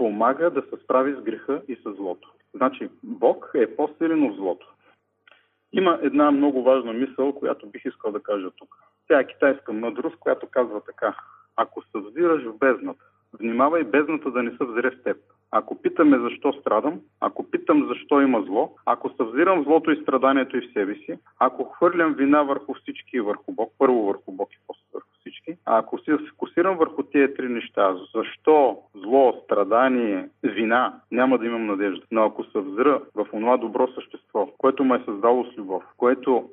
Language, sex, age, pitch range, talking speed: Bulgarian, male, 40-59, 125-170 Hz, 175 wpm